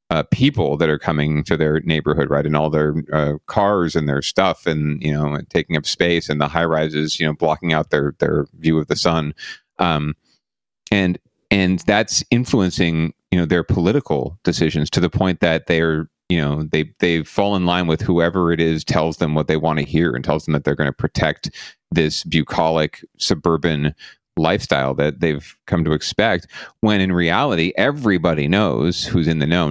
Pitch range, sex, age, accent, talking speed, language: 75-90 Hz, male, 40-59, American, 195 wpm, English